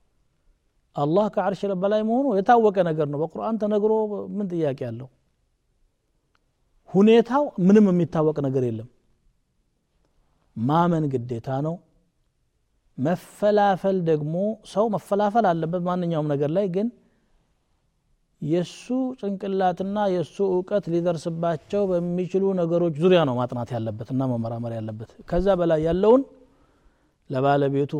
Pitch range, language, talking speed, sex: 130-185 Hz, Amharic, 105 wpm, male